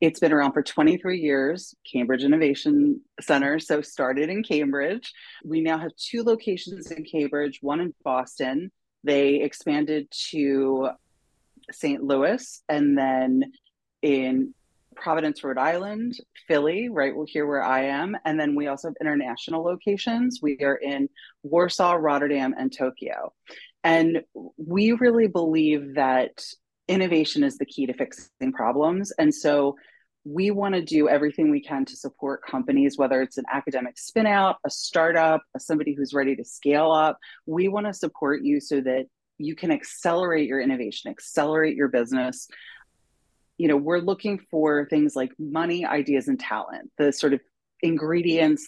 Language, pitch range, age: English, 140-175 Hz, 30-49